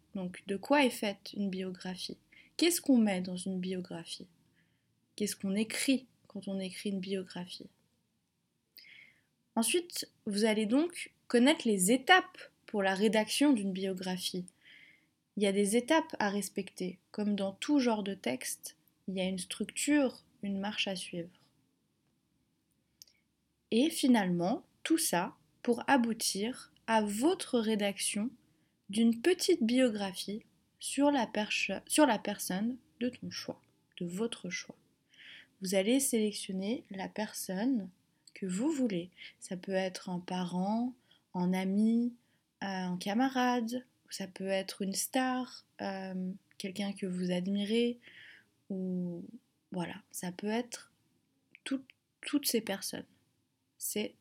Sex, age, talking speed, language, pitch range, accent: female, 20-39, 130 wpm, French, 185-240 Hz, French